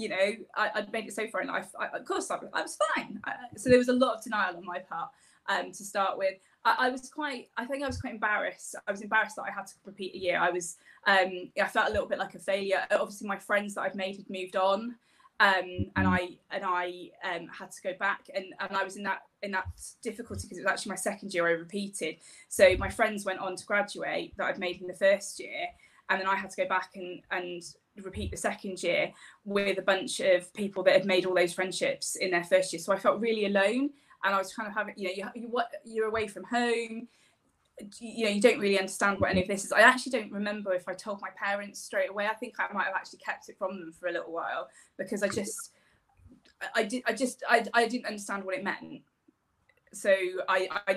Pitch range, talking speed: 185-225 Hz, 250 wpm